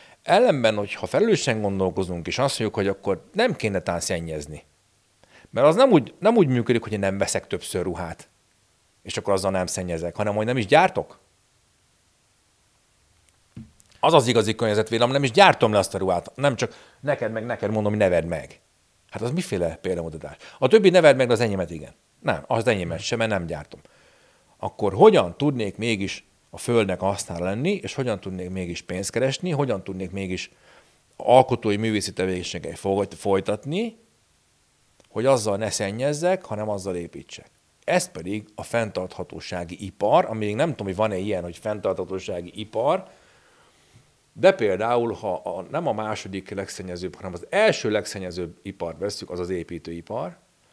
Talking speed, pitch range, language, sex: 160 wpm, 90-120 Hz, Hungarian, male